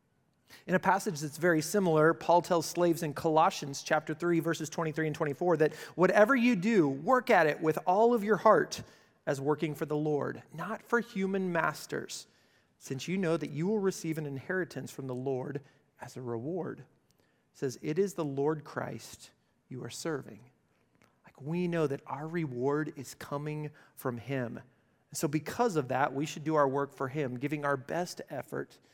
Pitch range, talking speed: 135-175 Hz, 180 wpm